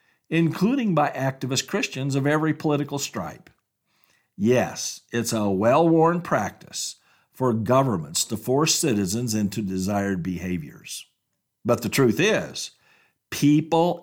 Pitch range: 120-160 Hz